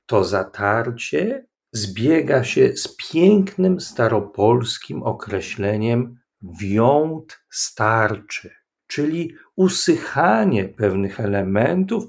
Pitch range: 110-170 Hz